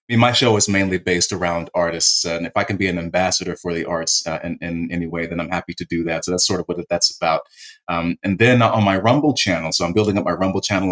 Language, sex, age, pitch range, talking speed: English, male, 30-49, 90-105 Hz, 280 wpm